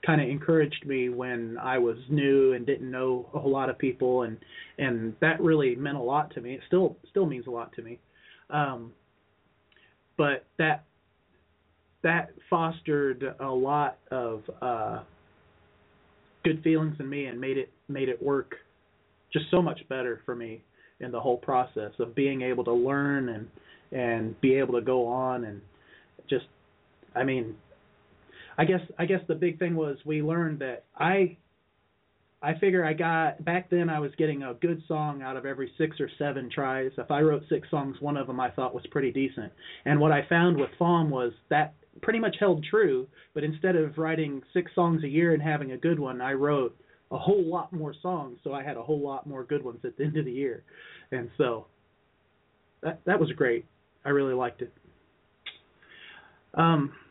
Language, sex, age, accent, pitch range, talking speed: English, male, 30-49, American, 125-155 Hz, 190 wpm